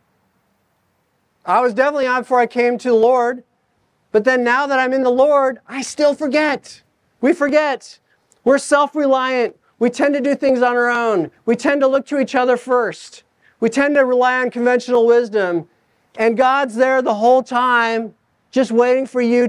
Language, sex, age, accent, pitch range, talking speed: English, male, 40-59, American, 220-265 Hz, 180 wpm